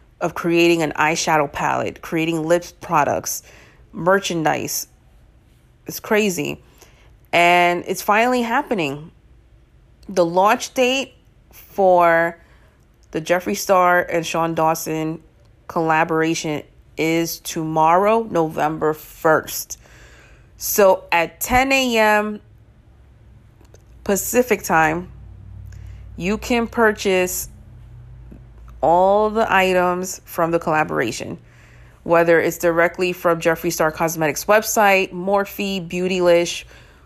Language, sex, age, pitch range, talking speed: English, female, 30-49, 155-195 Hz, 90 wpm